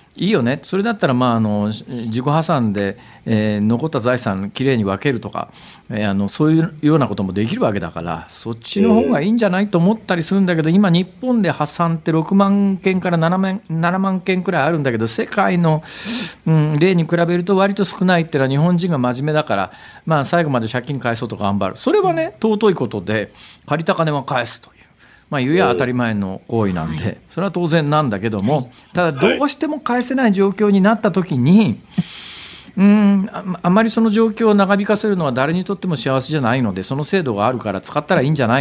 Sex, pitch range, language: male, 120-190 Hz, Japanese